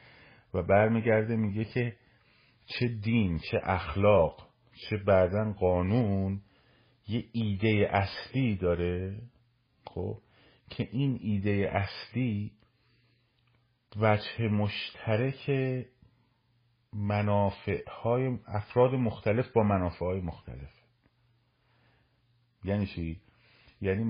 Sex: male